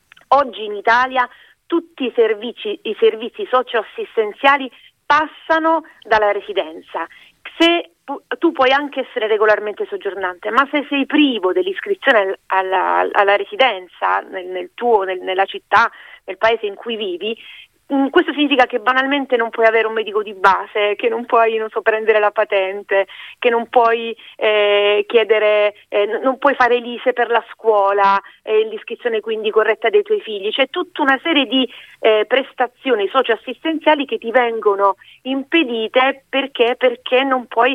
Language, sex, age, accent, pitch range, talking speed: Italian, female, 30-49, native, 205-280 Hz, 150 wpm